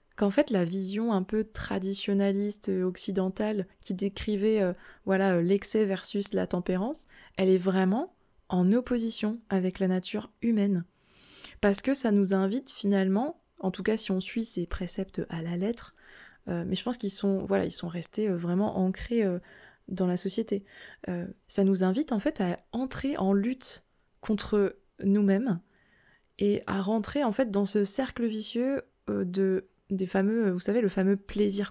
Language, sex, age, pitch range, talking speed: French, female, 20-39, 190-215 Hz, 165 wpm